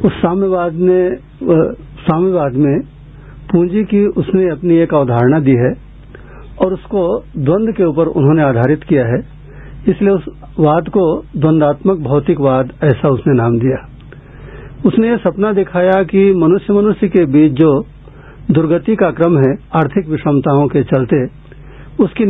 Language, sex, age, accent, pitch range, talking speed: Hindi, male, 60-79, native, 140-180 Hz, 135 wpm